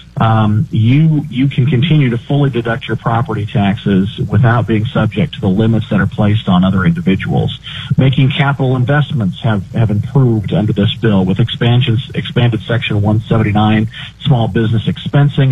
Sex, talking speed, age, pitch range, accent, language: male, 160 wpm, 40-59, 110-135 Hz, American, English